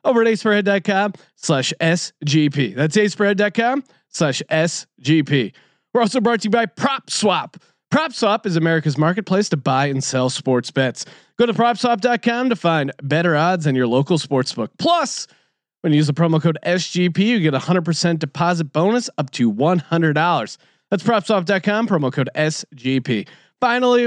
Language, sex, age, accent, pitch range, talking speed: English, male, 30-49, American, 150-225 Hz, 175 wpm